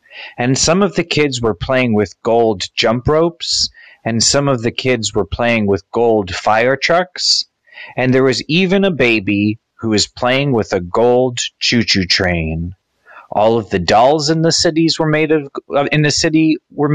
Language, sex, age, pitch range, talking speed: English, male, 30-49, 105-150 Hz, 175 wpm